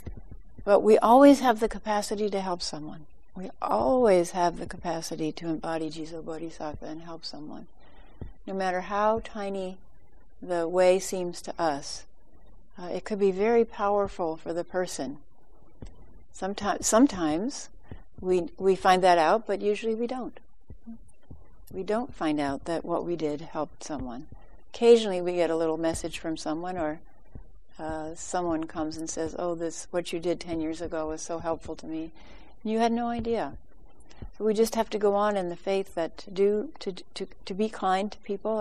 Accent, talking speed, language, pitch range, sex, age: American, 175 wpm, English, 165-205 Hz, female, 60-79